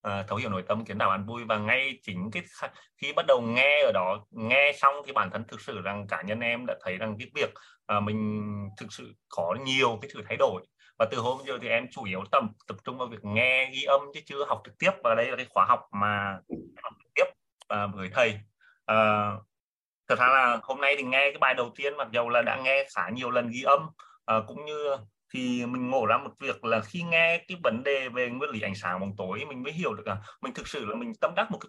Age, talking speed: 20-39, 260 wpm